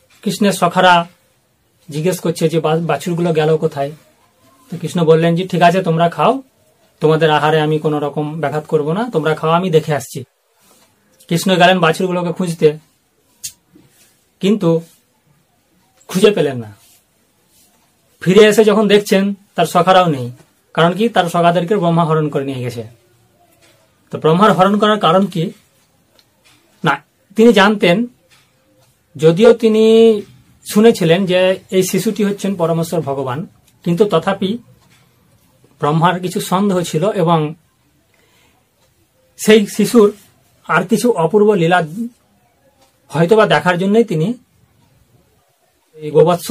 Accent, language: native, Bengali